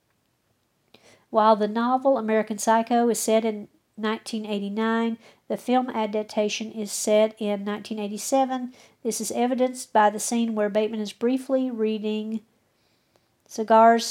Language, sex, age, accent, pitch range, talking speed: English, female, 50-69, American, 210-230 Hz, 120 wpm